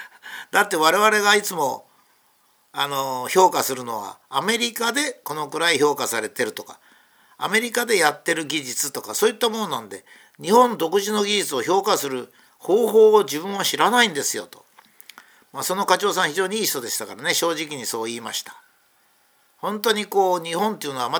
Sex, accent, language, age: male, native, Japanese, 50-69